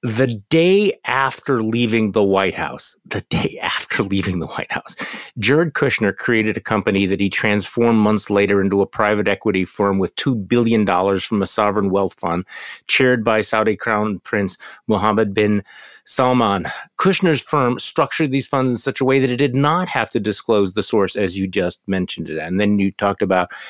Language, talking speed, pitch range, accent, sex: English, 185 wpm, 100-130 Hz, American, male